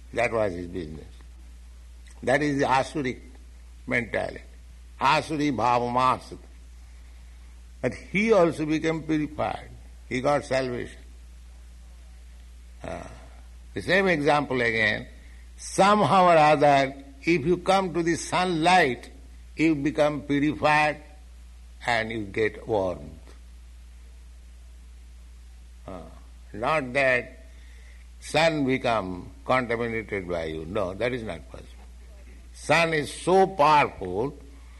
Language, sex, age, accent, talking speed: English, male, 60-79, Indian, 100 wpm